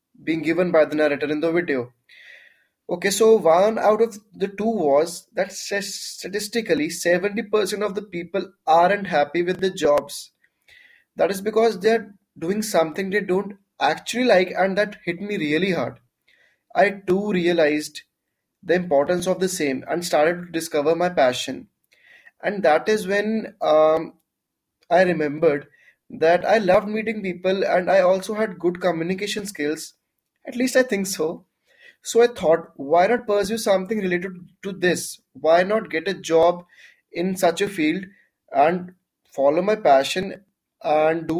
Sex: male